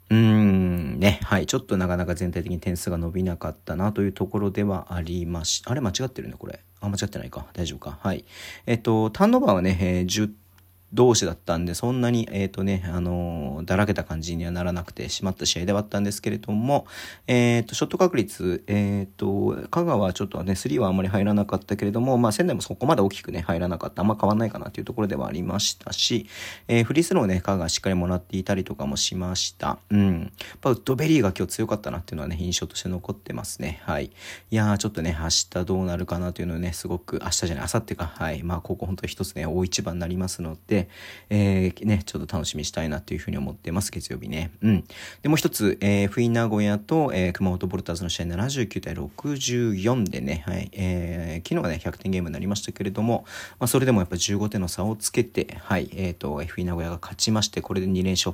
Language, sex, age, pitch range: Japanese, male, 40-59, 90-105 Hz